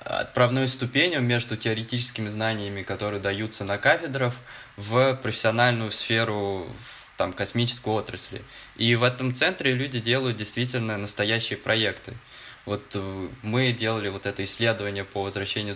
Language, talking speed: Russian, 120 wpm